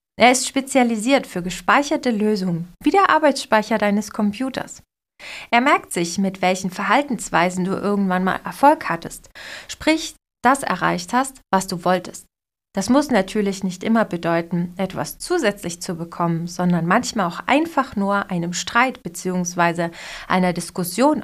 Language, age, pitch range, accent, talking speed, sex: German, 20-39, 180-260 Hz, German, 140 wpm, female